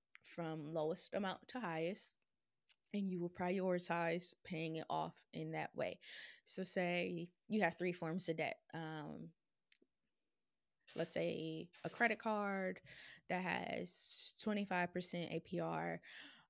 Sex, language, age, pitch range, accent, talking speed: female, English, 20-39, 160-185 Hz, American, 120 wpm